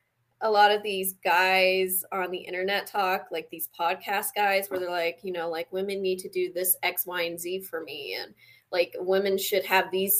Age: 20-39